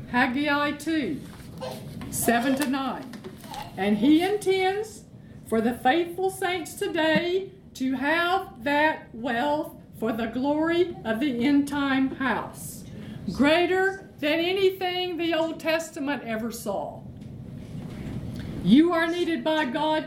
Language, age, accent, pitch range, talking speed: English, 50-69, American, 250-355 Hz, 110 wpm